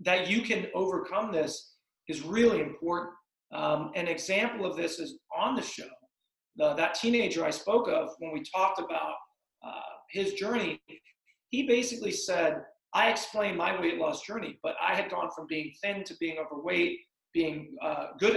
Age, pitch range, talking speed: 40-59, 170-230 Hz, 165 wpm